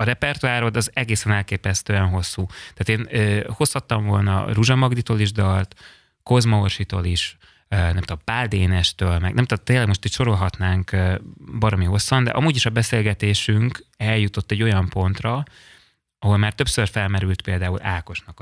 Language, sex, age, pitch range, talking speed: Hungarian, male, 20-39, 95-120 Hz, 145 wpm